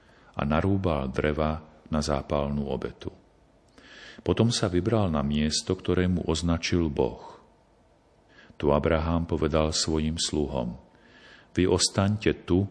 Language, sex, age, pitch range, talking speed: Slovak, male, 50-69, 75-90 Hz, 110 wpm